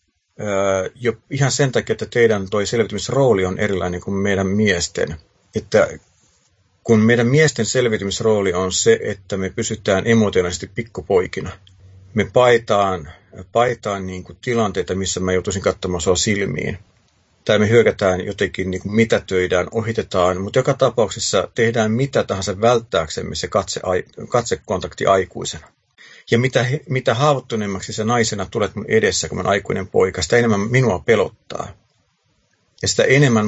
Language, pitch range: Finnish, 95-120 Hz